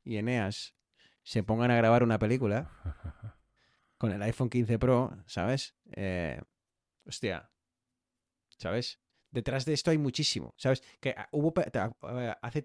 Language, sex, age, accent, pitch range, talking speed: Spanish, male, 30-49, Spanish, 95-130 Hz, 130 wpm